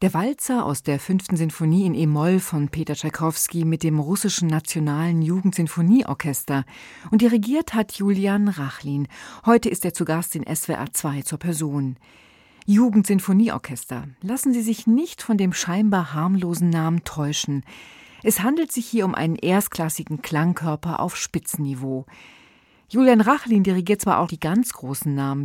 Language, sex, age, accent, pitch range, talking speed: German, female, 40-59, German, 155-215 Hz, 145 wpm